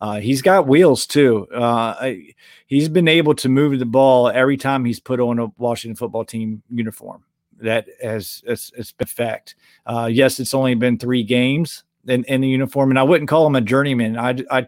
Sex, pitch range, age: male, 120-140 Hz, 40-59